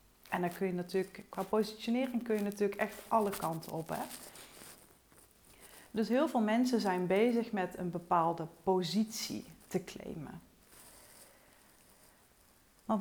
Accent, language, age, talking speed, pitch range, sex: Dutch, Dutch, 40-59, 125 wpm, 170-215 Hz, female